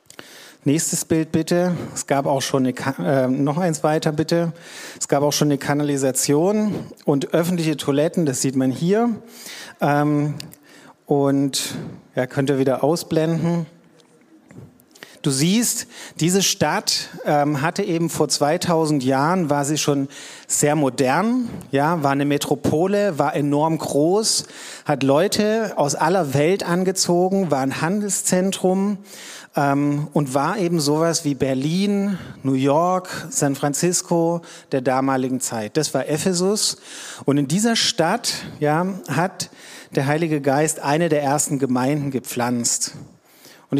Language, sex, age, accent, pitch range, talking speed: German, male, 40-59, German, 145-185 Hz, 130 wpm